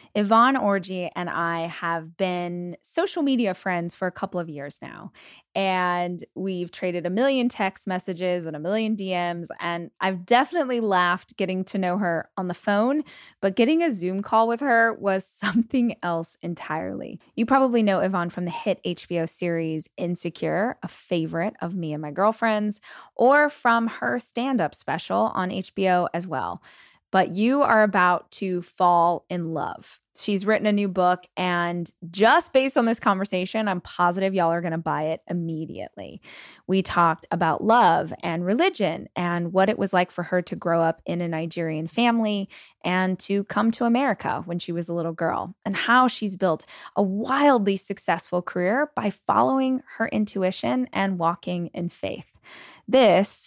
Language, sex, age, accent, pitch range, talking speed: English, female, 20-39, American, 175-215 Hz, 170 wpm